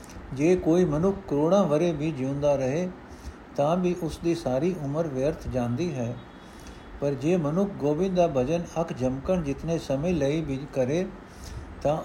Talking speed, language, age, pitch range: 145 wpm, Punjabi, 60-79, 135-175 Hz